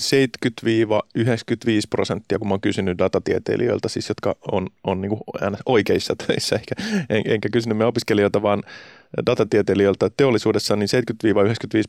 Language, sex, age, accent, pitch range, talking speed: Finnish, male, 30-49, native, 95-120 Hz, 115 wpm